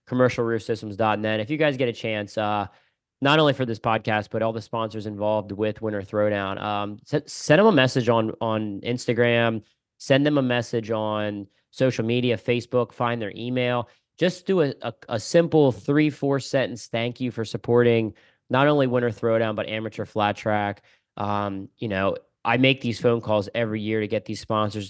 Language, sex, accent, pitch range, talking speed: English, male, American, 105-125 Hz, 180 wpm